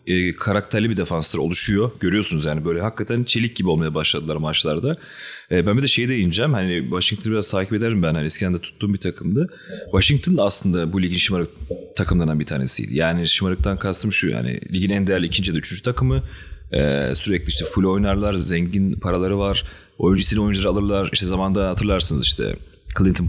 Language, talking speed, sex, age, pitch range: Turkish, 175 wpm, male, 30-49, 85-105 Hz